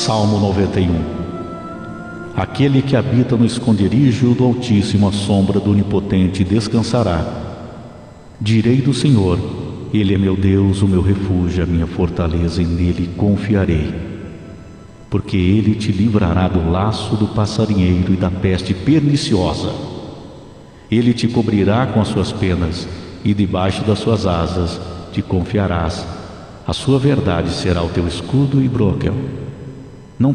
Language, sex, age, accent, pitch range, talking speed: Portuguese, male, 50-69, Brazilian, 90-110 Hz, 130 wpm